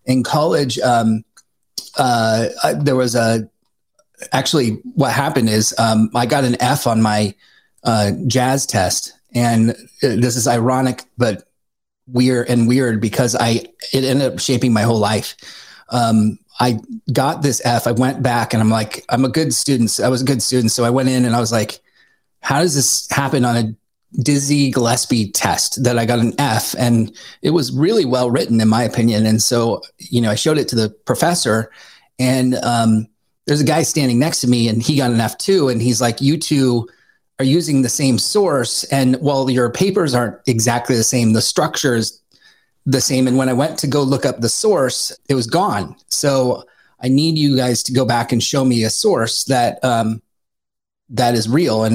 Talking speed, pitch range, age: 195 wpm, 115-130 Hz, 30-49